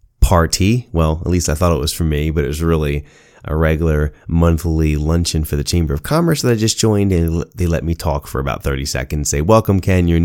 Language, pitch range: English, 80-110 Hz